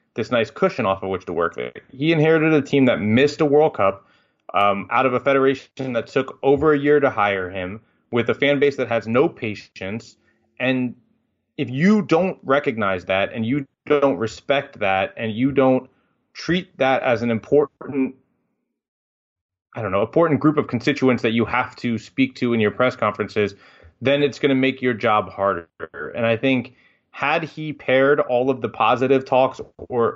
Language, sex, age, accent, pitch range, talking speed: English, male, 30-49, American, 110-140 Hz, 185 wpm